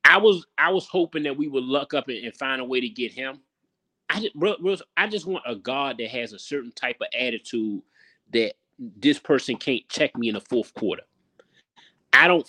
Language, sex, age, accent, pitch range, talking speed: English, male, 30-49, American, 130-170 Hz, 210 wpm